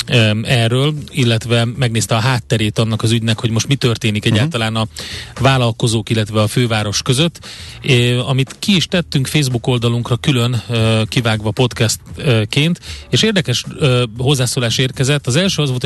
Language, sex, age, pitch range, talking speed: Hungarian, male, 30-49, 110-135 Hz, 140 wpm